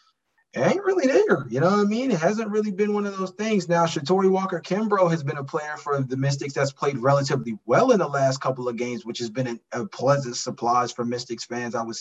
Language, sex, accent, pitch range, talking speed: English, male, American, 130-180 Hz, 235 wpm